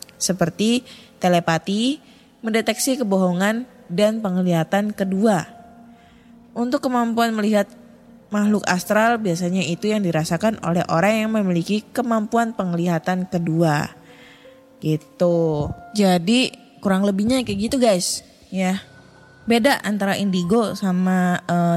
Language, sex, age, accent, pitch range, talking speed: Indonesian, female, 20-39, native, 185-235 Hz, 100 wpm